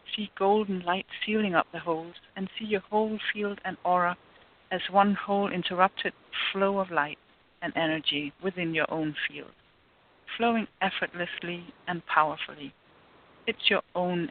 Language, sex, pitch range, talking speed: English, female, 165-205 Hz, 145 wpm